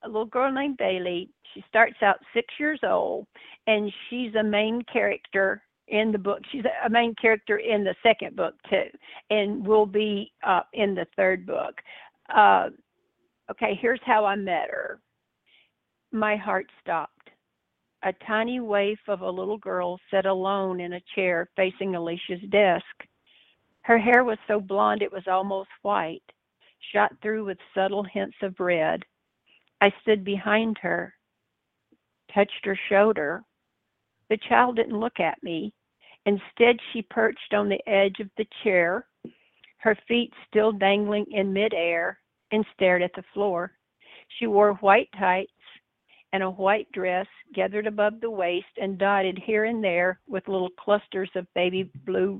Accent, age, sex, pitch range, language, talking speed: American, 50-69, female, 190-220 Hz, English, 150 wpm